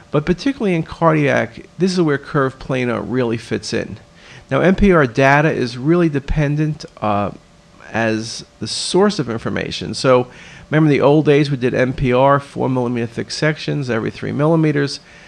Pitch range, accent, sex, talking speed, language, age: 125-165 Hz, American, male, 155 wpm, English, 40-59